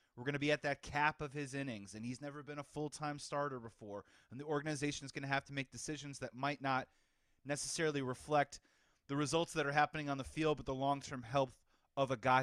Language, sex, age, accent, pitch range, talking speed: English, male, 30-49, American, 130-160 Hz, 225 wpm